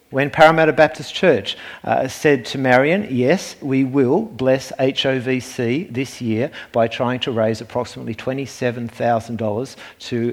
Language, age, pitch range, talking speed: English, 50-69, 110-140 Hz, 130 wpm